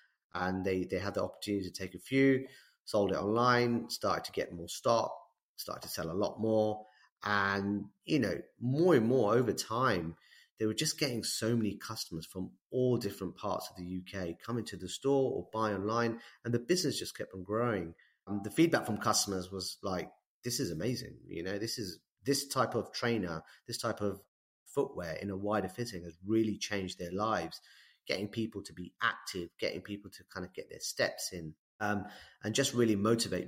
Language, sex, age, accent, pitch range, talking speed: English, male, 30-49, British, 95-120 Hz, 195 wpm